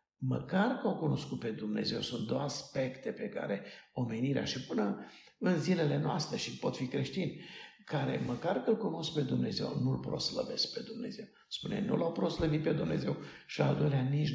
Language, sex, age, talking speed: Romanian, male, 60-79, 175 wpm